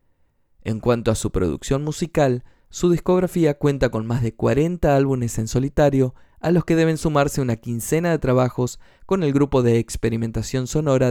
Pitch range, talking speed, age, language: 115-145 Hz, 165 wpm, 20-39, Spanish